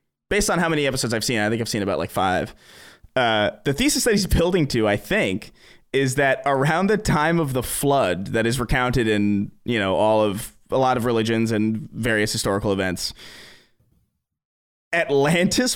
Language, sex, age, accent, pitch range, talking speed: English, male, 20-39, American, 120-170 Hz, 185 wpm